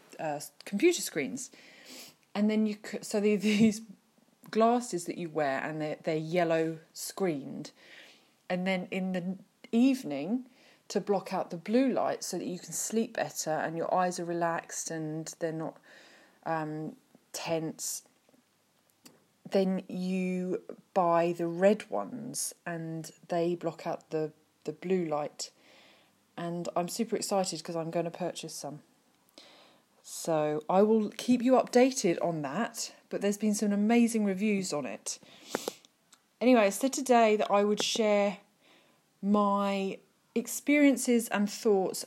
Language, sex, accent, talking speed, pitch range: English, female, British, 135 wpm, 170-215 Hz